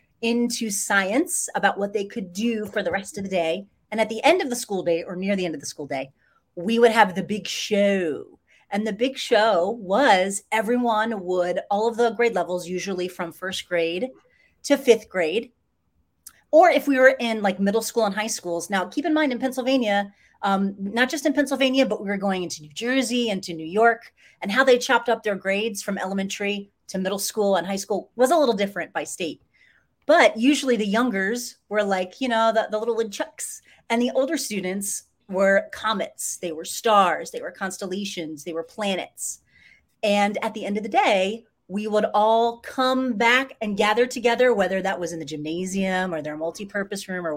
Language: English